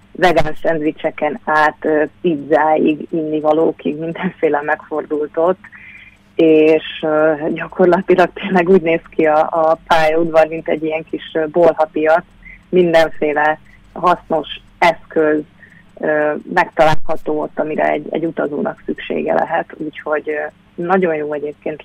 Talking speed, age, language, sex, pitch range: 100 wpm, 30-49, Hungarian, female, 155-170 Hz